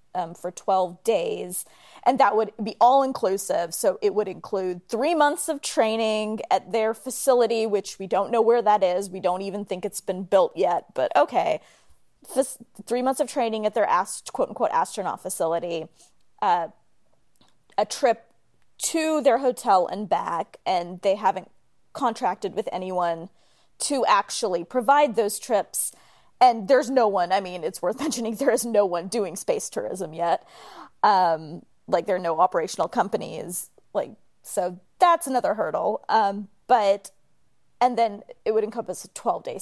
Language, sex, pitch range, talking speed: English, female, 190-260 Hz, 160 wpm